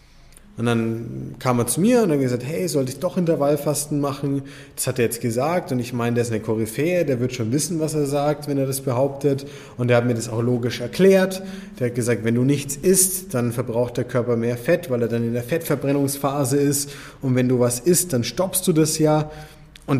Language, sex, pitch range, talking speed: German, male, 125-155 Hz, 230 wpm